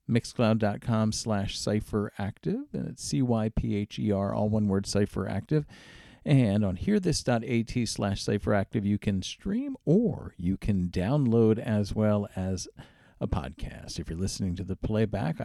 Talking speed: 130 wpm